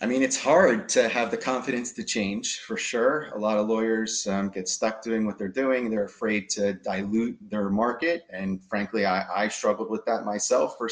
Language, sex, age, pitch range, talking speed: English, male, 30-49, 105-125 Hz, 210 wpm